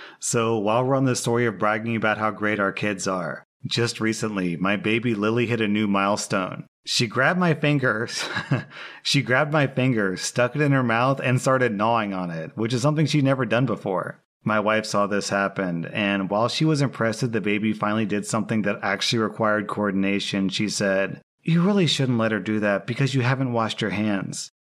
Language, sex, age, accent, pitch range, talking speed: English, male, 30-49, American, 100-130 Hz, 195 wpm